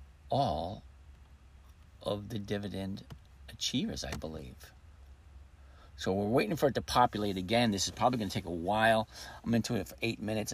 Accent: American